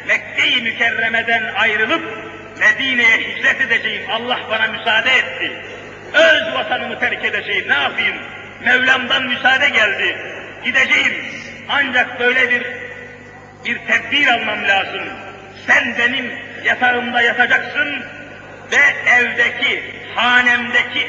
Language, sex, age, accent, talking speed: Turkish, male, 50-69, native, 95 wpm